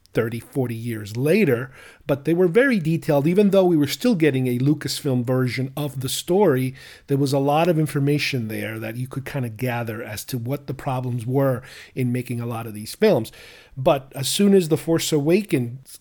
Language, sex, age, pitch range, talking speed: English, male, 40-59, 130-160 Hz, 200 wpm